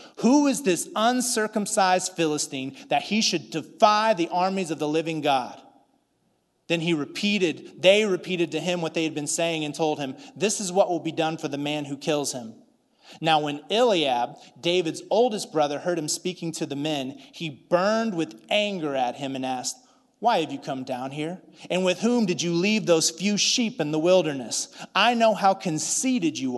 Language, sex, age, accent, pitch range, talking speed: English, male, 30-49, American, 150-205 Hz, 190 wpm